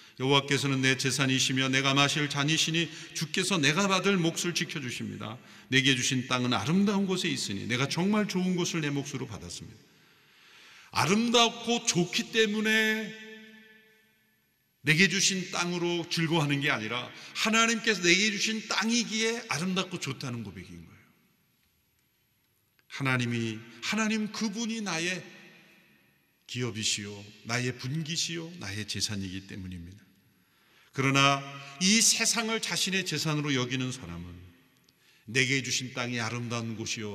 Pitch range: 115-175 Hz